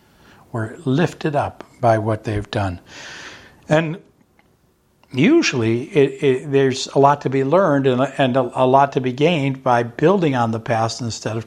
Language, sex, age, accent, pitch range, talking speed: English, male, 60-79, American, 110-140 Hz, 165 wpm